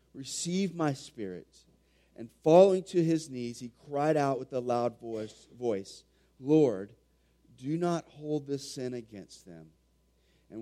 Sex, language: male, English